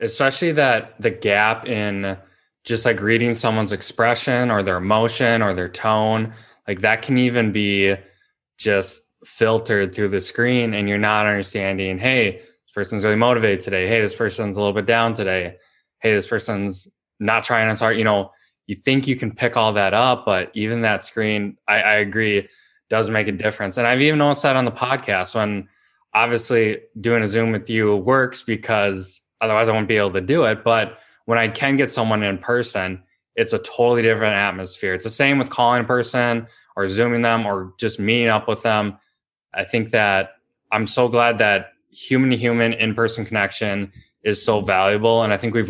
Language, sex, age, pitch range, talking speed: English, male, 20-39, 100-115 Hz, 190 wpm